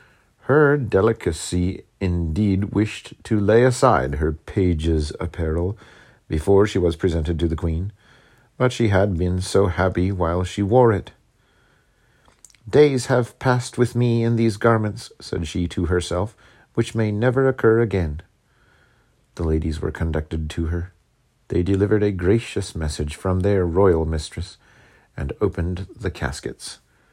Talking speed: 140 wpm